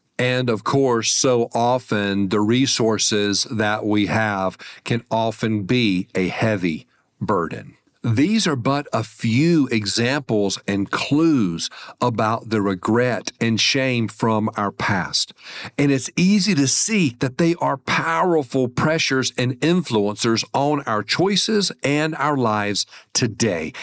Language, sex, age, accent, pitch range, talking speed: English, male, 50-69, American, 110-150 Hz, 130 wpm